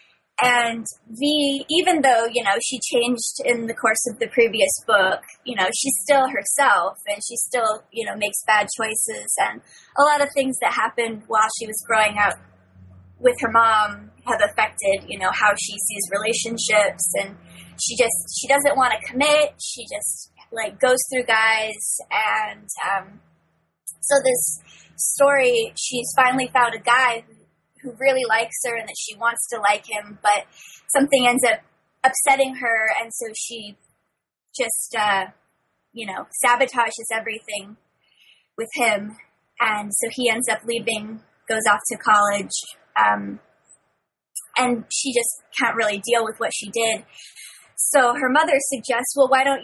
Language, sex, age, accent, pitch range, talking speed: English, female, 20-39, American, 215-260 Hz, 160 wpm